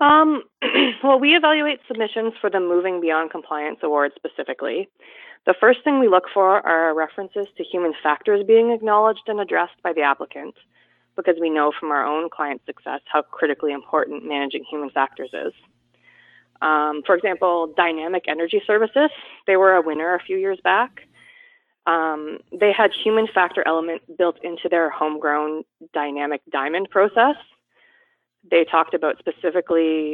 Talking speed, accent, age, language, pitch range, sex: 150 wpm, American, 20-39, English, 150-215 Hz, female